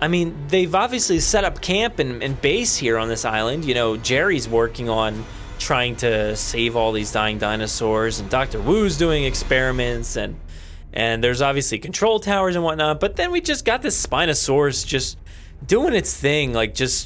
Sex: male